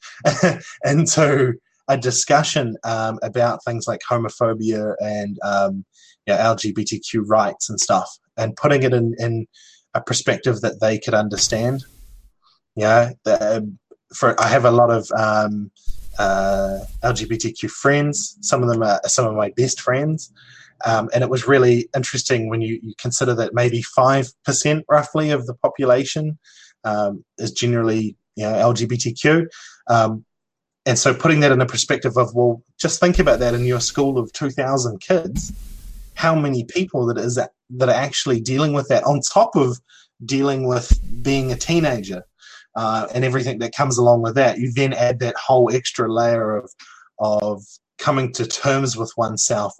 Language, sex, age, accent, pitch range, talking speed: English, male, 20-39, Australian, 110-130 Hz, 165 wpm